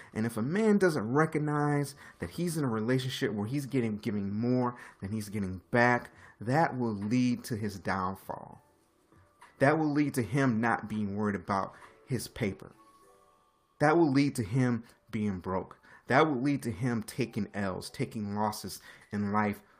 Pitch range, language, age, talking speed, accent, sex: 100-130 Hz, English, 30-49, 165 wpm, American, male